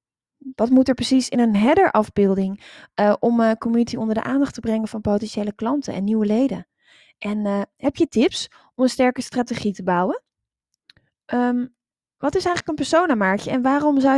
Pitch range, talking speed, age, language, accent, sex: 205-270 Hz, 185 wpm, 20-39, Dutch, Dutch, female